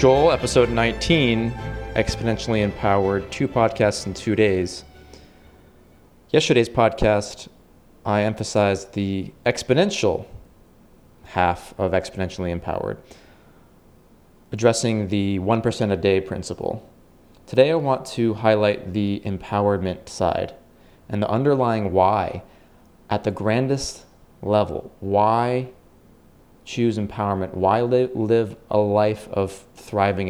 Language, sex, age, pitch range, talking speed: English, male, 30-49, 95-120 Hz, 100 wpm